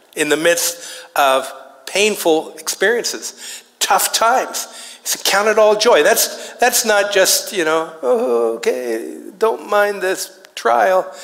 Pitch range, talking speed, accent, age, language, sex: 175-275 Hz, 145 wpm, American, 60-79, English, male